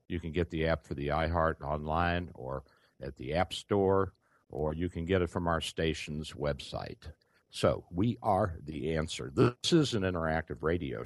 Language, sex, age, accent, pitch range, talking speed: English, male, 60-79, American, 75-95 Hz, 180 wpm